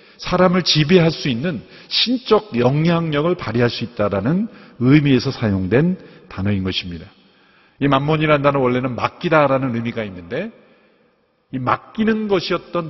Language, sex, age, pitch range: Korean, male, 50-69, 115-170 Hz